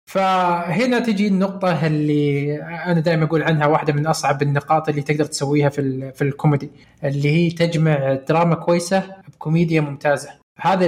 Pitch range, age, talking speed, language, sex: 150-185 Hz, 20-39, 145 wpm, Arabic, male